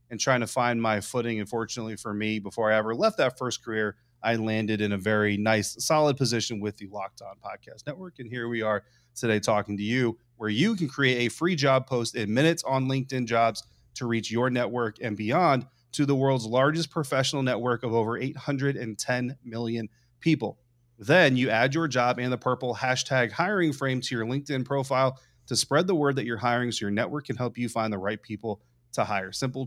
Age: 30-49